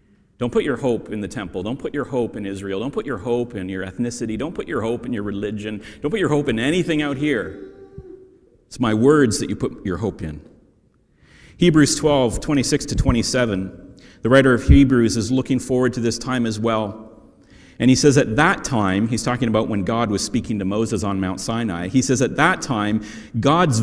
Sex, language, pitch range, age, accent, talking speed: male, English, 105-145 Hz, 40-59, American, 215 wpm